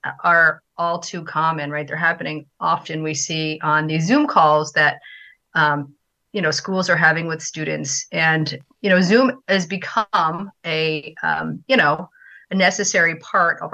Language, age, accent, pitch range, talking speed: English, 30-49, American, 155-190 Hz, 160 wpm